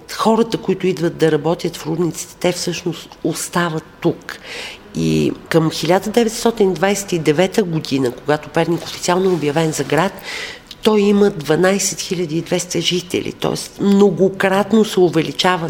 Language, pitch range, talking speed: Bulgarian, 150-190 Hz, 115 wpm